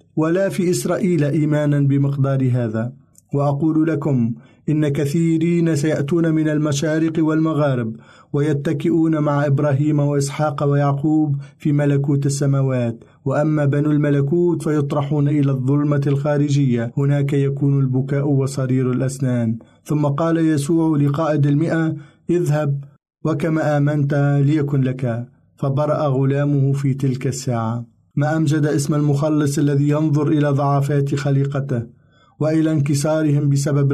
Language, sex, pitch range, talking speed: Arabic, male, 140-155 Hz, 110 wpm